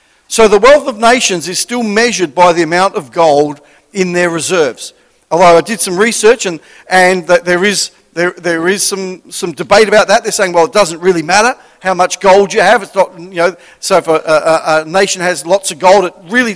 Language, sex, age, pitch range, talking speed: English, male, 50-69, 175-220 Hz, 225 wpm